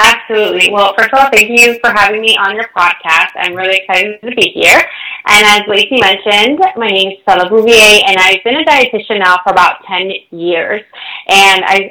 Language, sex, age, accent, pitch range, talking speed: English, female, 20-39, American, 180-215 Hz, 200 wpm